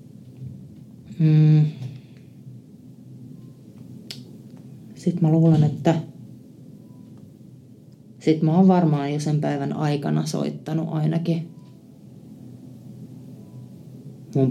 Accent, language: native, Finnish